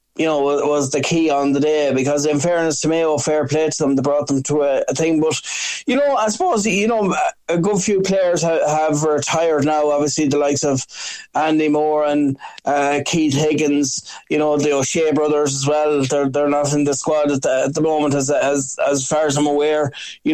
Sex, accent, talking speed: male, Irish, 225 wpm